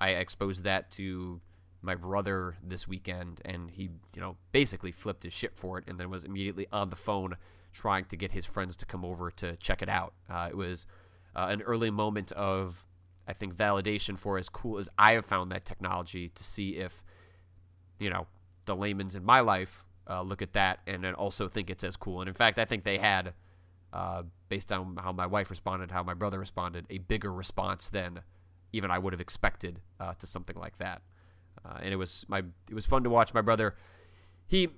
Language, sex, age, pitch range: English, male, 30-49, 90-105 Hz